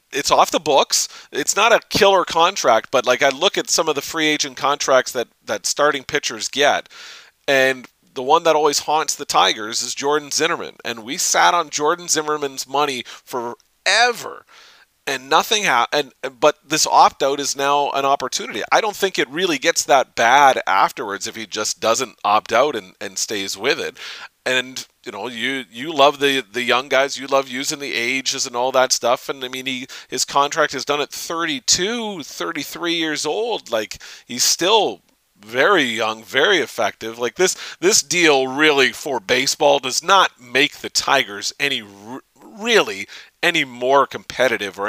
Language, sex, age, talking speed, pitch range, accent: English, male, 40-59, 180 wpm, 125-150 Hz, American